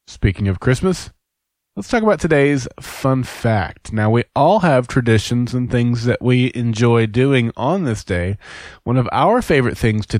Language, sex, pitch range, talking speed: English, male, 110-155 Hz, 170 wpm